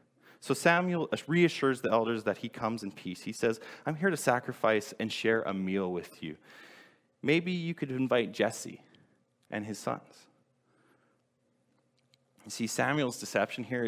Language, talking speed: English, 150 wpm